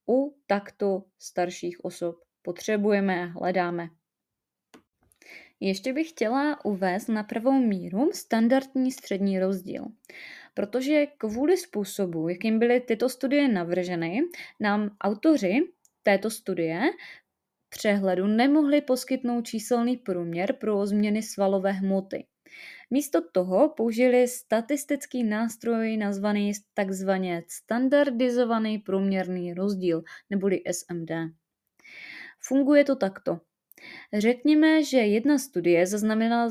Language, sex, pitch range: Czech, female, 190-250 Hz